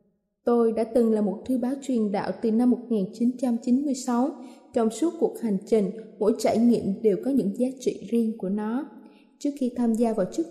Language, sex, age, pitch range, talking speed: Vietnamese, female, 20-39, 220-275 Hz, 195 wpm